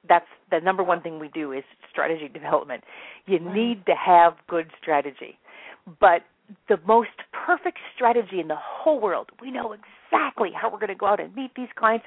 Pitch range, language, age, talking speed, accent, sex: 170-240 Hz, English, 40-59, 190 wpm, American, female